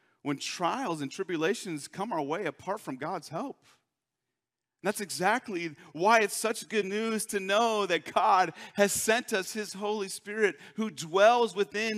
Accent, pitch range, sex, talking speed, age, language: American, 135-200 Hz, male, 155 wpm, 40-59, English